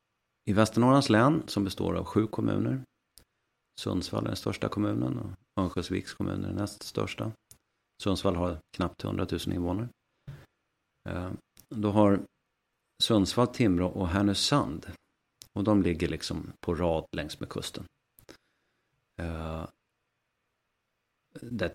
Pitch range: 85-105 Hz